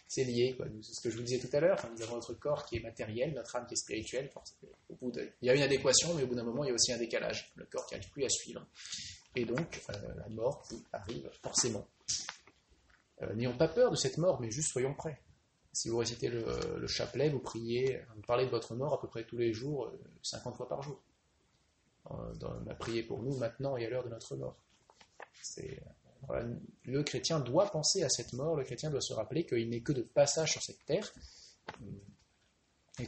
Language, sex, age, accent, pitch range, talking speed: French, male, 20-39, French, 115-135 Hz, 220 wpm